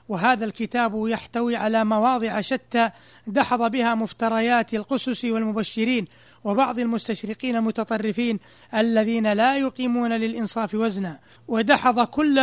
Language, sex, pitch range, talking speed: Arabic, male, 220-245 Hz, 100 wpm